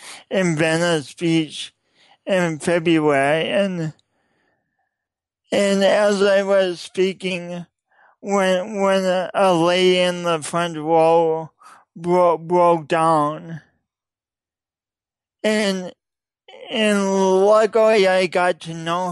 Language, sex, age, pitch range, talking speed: English, male, 40-59, 160-195 Hz, 90 wpm